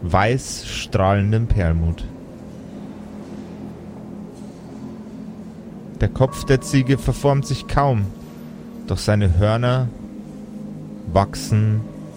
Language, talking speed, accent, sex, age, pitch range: German, 70 wpm, German, male, 30-49, 100-130 Hz